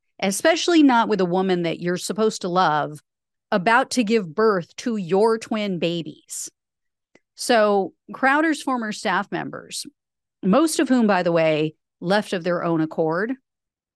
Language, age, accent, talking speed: English, 40-59, American, 145 wpm